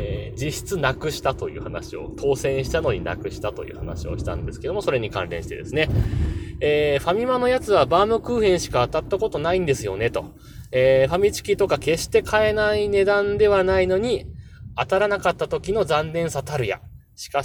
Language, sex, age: Japanese, male, 20-39